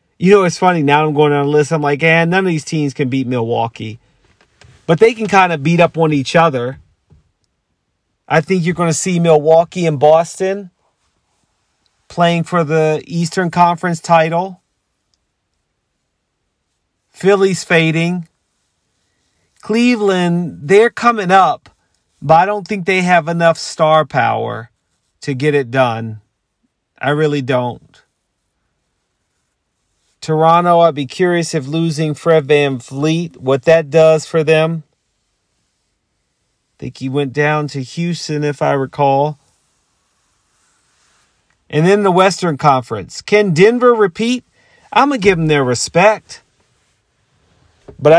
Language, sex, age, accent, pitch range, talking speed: English, male, 40-59, American, 150-185 Hz, 130 wpm